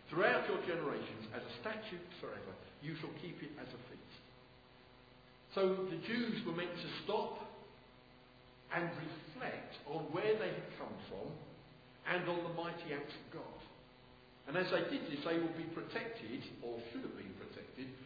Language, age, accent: English, 50-69, British